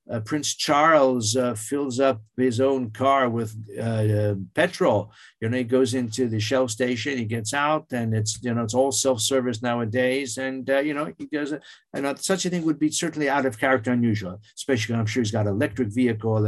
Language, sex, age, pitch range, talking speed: English, male, 50-69, 115-160 Hz, 210 wpm